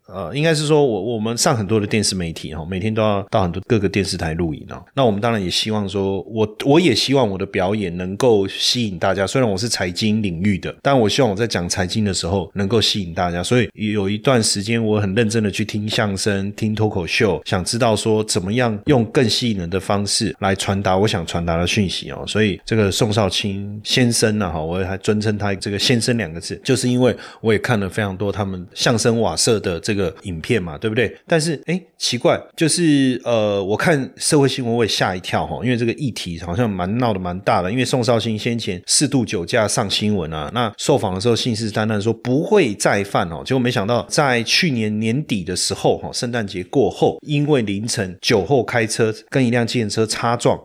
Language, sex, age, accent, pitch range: Chinese, male, 30-49, native, 100-120 Hz